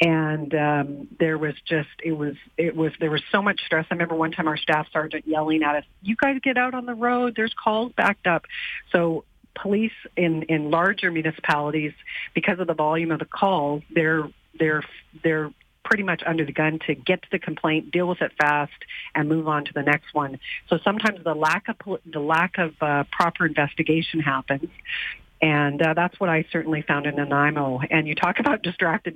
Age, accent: 40-59, American